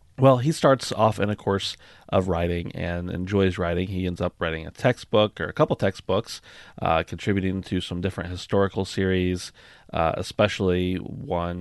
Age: 30-49